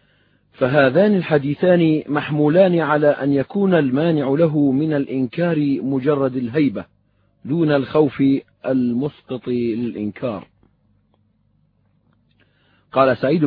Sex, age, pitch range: male, 50-69, 130-160 Hz